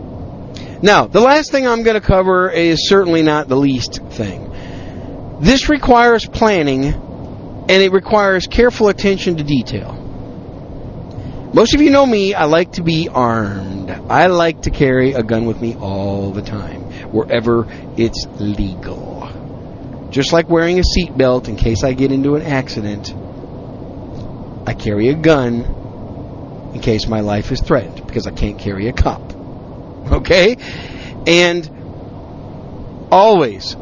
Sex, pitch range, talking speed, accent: male, 115-180 Hz, 140 wpm, American